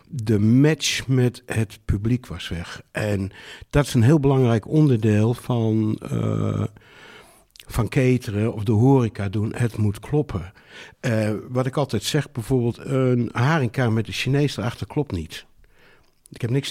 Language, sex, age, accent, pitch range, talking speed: Dutch, male, 60-79, Dutch, 110-135 Hz, 150 wpm